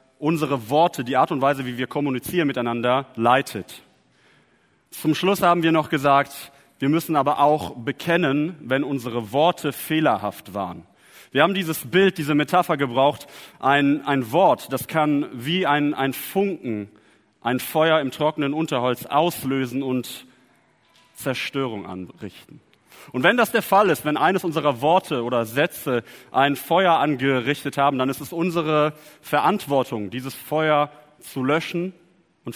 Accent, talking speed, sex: German, 145 wpm, male